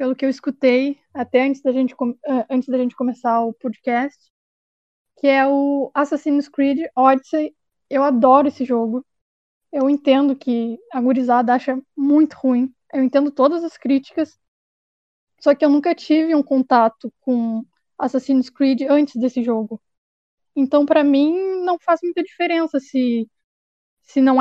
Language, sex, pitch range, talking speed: Portuguese, female, 260-300 Hz, 150 wpm